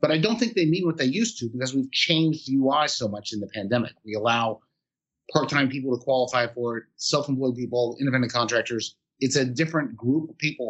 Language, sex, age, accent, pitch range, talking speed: English, male, 30-49, American, 110-135 Hz, 210 wpm